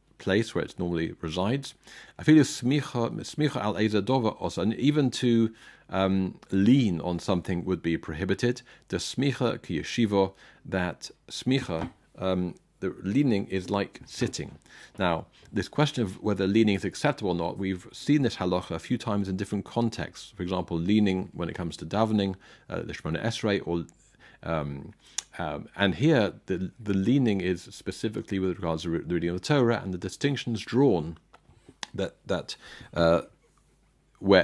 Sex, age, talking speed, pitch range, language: male, 50-69, 150 wpm, 85-110 Hz, English